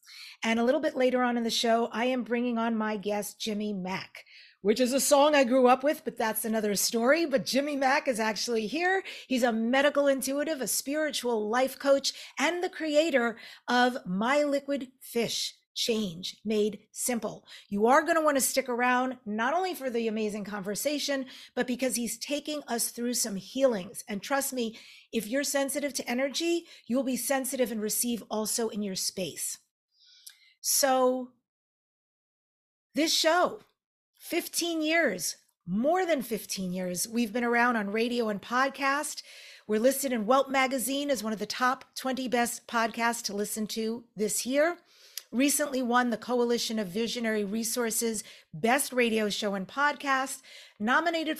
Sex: female